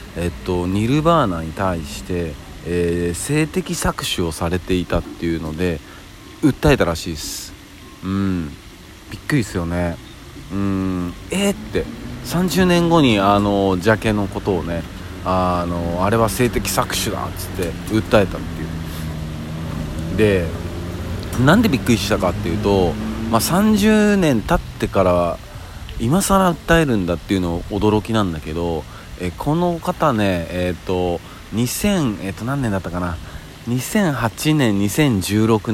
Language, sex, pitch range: Japanese, male, 85-115 Hz